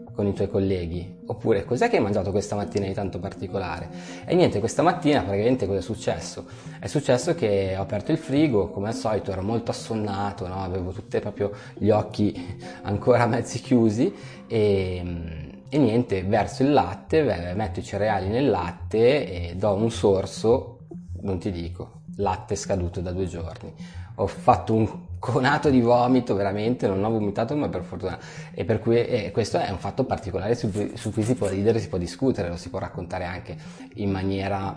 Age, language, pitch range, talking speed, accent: 20-39, Italian, 90-115 Hz, 185 wpm, native